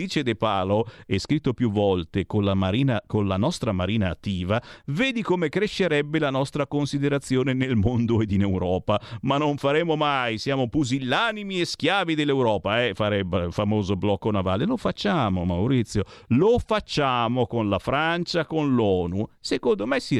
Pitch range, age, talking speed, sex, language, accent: 105-170 Hz, 50-69, 160 wpm, male, Italian, native